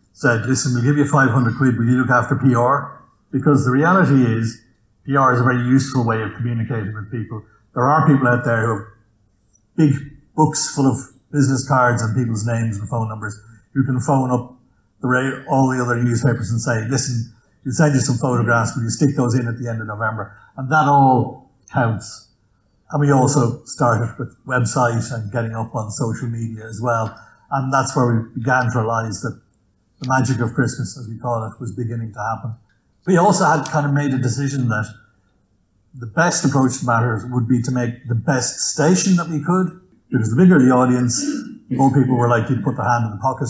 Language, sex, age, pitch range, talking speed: English, male, 60-79, 115-135 Hz, 205 wpm